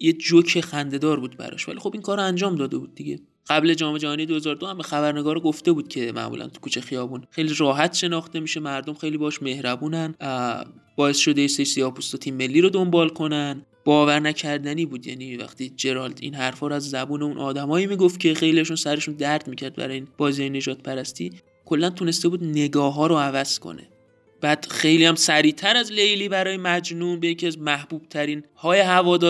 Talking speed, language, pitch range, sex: 185 wpm, Persian, 140-170 Hz, male